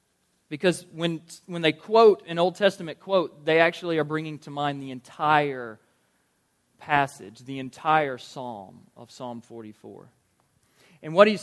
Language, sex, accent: English, male, American